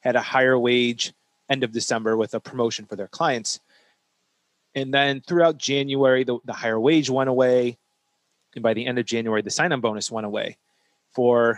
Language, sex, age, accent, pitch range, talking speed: English, male, 30-49, American, 115-140 Hz, 180 wpm